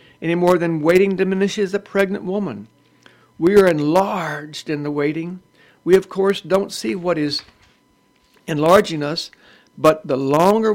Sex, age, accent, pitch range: male, 60-79, American, 135-185 Hz